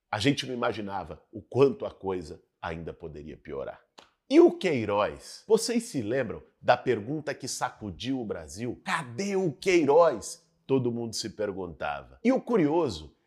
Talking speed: 150 wpm